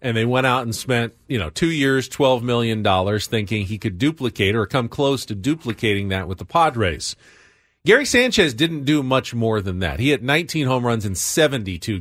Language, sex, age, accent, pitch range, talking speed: English, male, 40-59, American, 110-145 Hz, 205 wpm